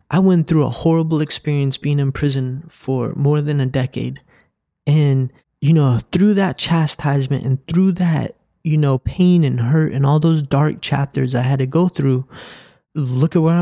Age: 20-39